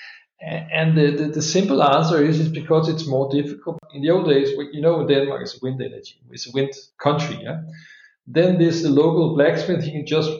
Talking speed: 200 wpm